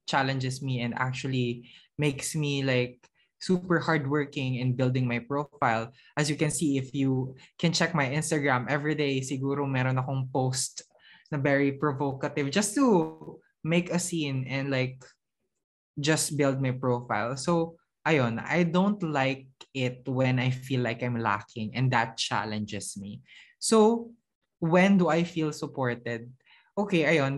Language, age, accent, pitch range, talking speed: English, 20-39, Filipino, 130-170 Hz, 145 wpm